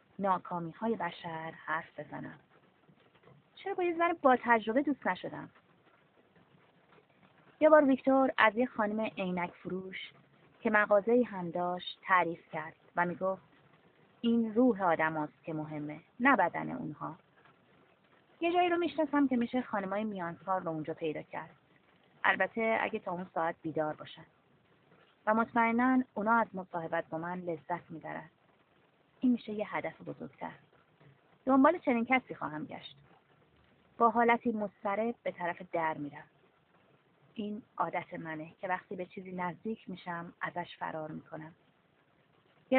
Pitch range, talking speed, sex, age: 165-230 Hz, 130 wpm, female, 30-49